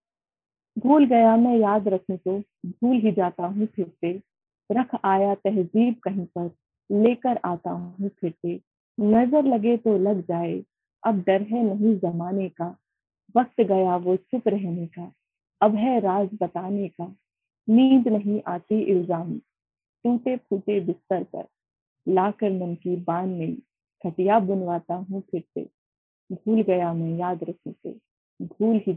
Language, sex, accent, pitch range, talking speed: Hindi, female, native, 175-225 Hz, 140 wpm